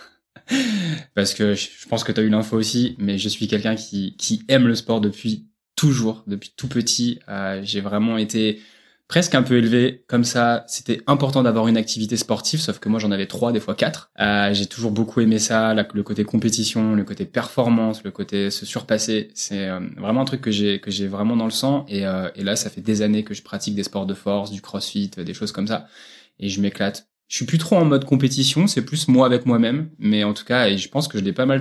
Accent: French